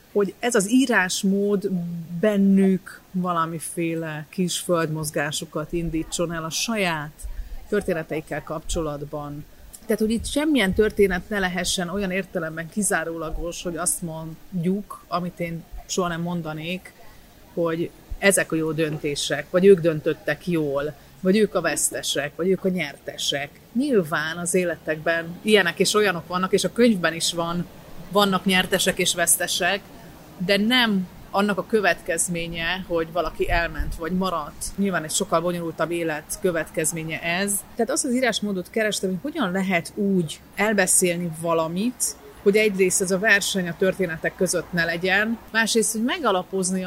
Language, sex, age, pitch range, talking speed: Hungarian, female, 30-49, 165-200 Hz, 135 wpm